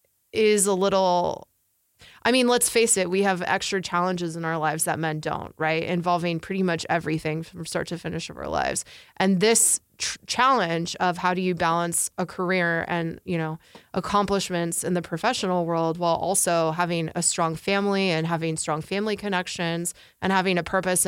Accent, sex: American, female